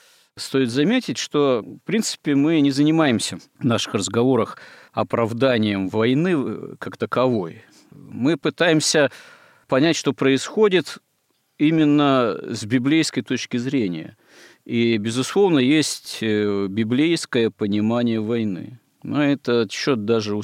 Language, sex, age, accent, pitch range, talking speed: Russian, male, 50-69, native, 110-140 Hz, 105 wpm